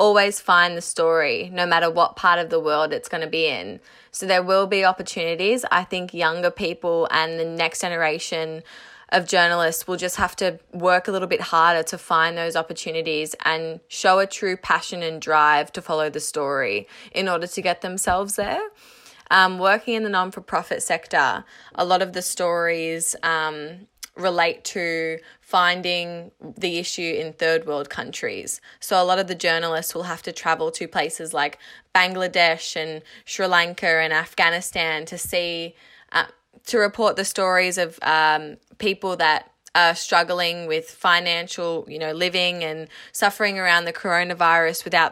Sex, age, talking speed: female, 20-39, 165 wpm